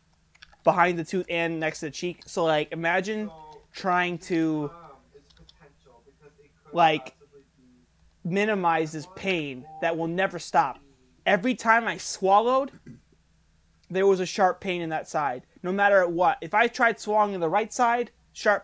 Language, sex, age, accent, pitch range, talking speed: English, male, 20-39, American, 155-190 Hz, 145 wpm